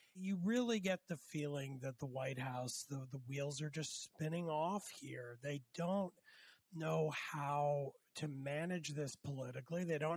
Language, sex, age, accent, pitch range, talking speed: English, male, 40-59, American, 135-170 Hz, 160 wpm